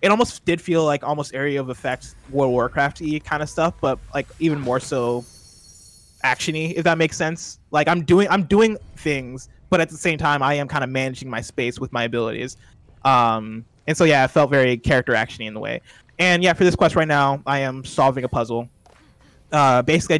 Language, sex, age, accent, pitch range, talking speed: English, male, 20-39, American, 120-155 Hz, 215 wpm